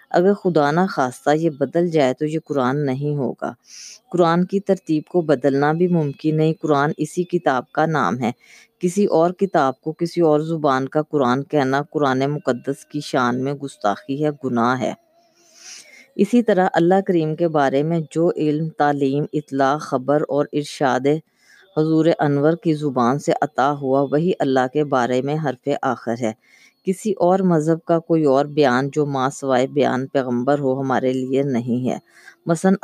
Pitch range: 135-170 Hz